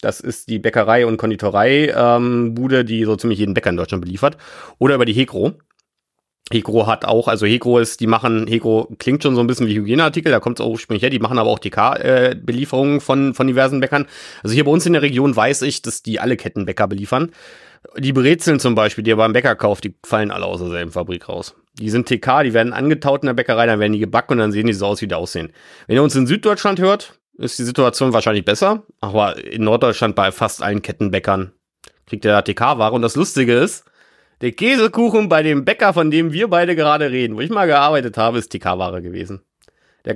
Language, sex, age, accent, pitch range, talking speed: German, male, 30-49, German, 110-140 Hz, 220 wpm